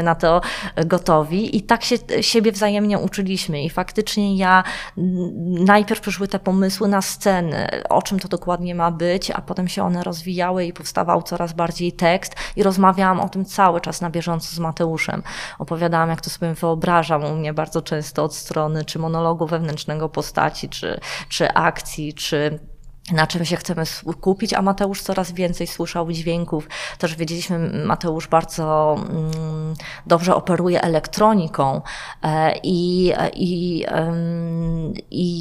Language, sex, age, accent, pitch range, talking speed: Polish, female, 20-39, native, 160-180 Hz, 140 wpm